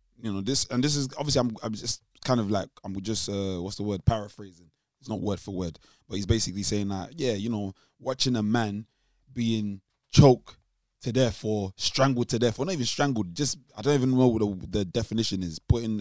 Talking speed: 220 wpm